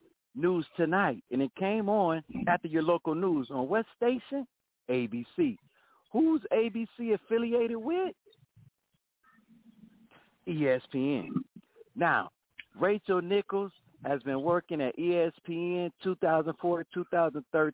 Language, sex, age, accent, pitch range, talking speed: English, male, 50-69, American, 155-225 Hz, 95 wpm